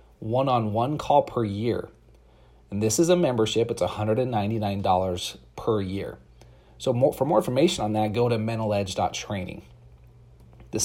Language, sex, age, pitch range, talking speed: English, male, 30-49, 100-120 Hz, 125 wpm